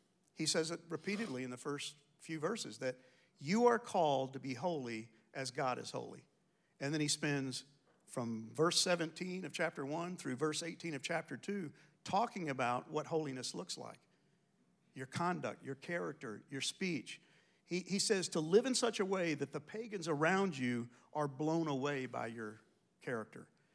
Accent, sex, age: American, male, 50-69